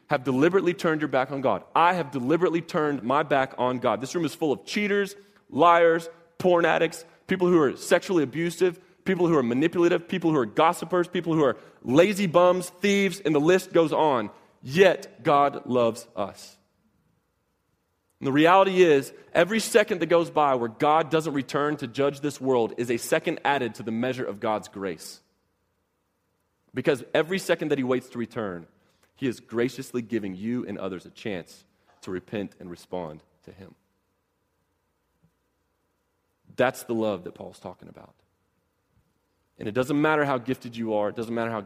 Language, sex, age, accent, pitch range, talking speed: English, male, 30-49, American, 100-160 Hz, 175 wpm